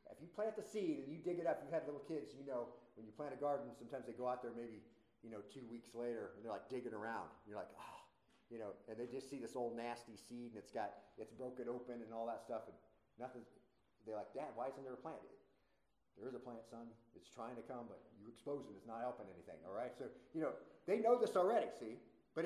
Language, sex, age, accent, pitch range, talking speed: English, male, 40-59, American, 115-160 Hz, 260 wpm